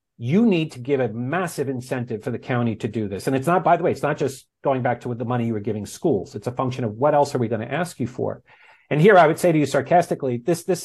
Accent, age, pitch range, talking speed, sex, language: American, 50-69, 115-150 Hz, 305 wpm, male, English